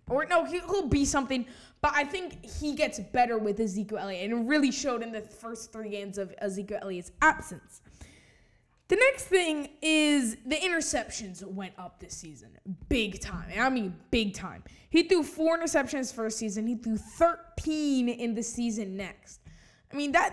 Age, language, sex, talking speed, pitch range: 10-29, English, female, 175 wpm, 210-290 Hz